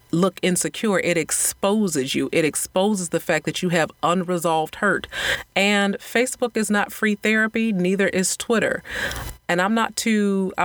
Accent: American